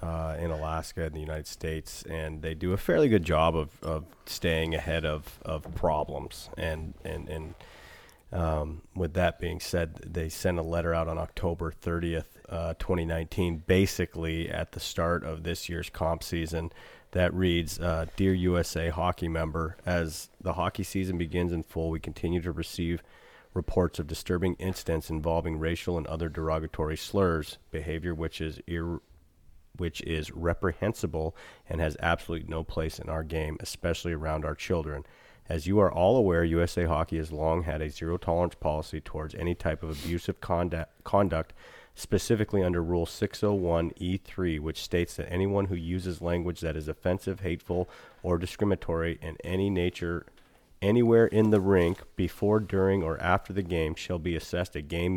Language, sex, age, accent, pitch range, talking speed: English, male, 30-49, American, 80-90 Hz, 165 wpm